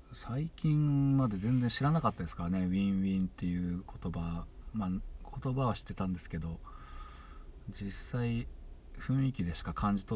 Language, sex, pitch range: Japanese, male, 80-110 Hz